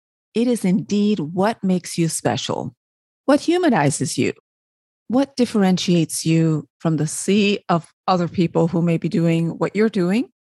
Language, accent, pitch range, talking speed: English, American, 160-215 Hz, 145 wpm